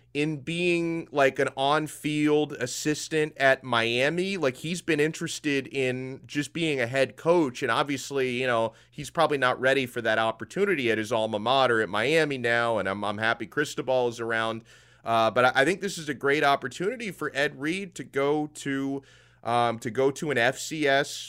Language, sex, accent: English, male, American